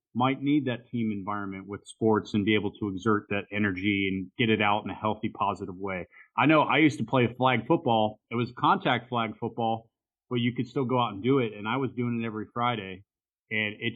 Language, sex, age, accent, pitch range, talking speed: English, male, 30-49, American, 105-125 Hz, 230 wpm